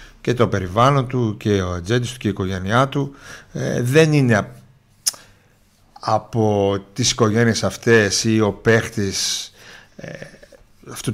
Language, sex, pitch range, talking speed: Greek, male, 105-135 Hz, 120 wpm